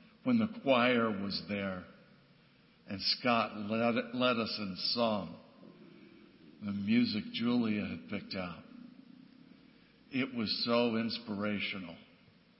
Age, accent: 60-79, American